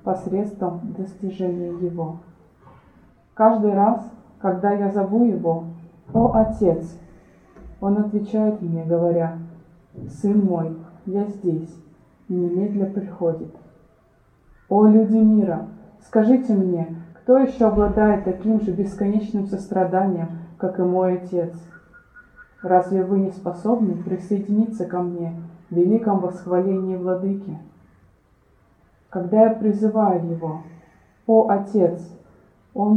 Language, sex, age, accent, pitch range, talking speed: Russian, female, 20-39, native, 175-210 Hz, 100 wpm